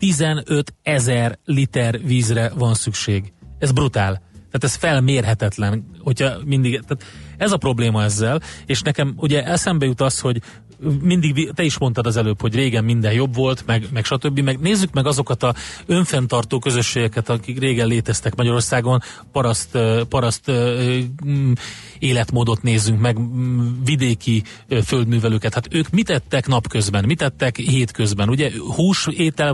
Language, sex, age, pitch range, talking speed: Hungarian, male, 30-49, 110-135 Hz, 135 wpm